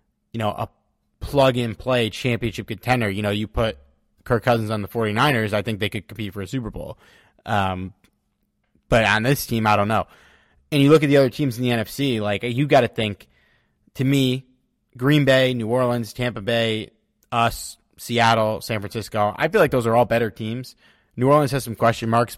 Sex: male